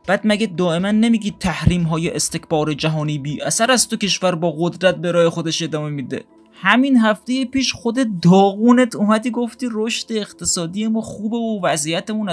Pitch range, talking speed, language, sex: 150-215 Hz, 155 wpm, Persian, male